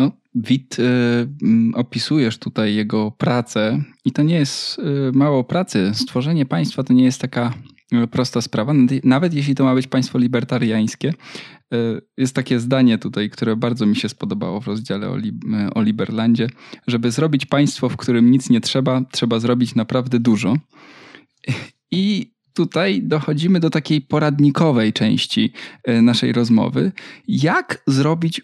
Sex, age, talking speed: male, 20-39, 135 wpm